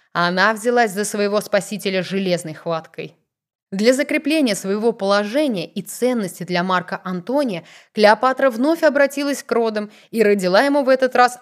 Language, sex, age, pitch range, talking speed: Russian, female, 20-39, 180-245 Hz, 140 wpm